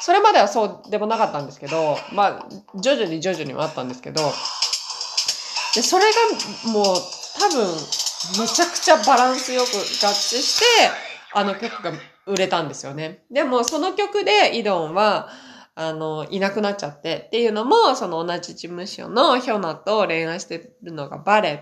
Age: 20-39